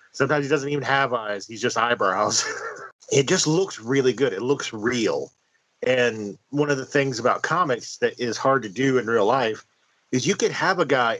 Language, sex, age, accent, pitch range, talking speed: English, male, 40-59, American, 120-150 Hz, 205 wpm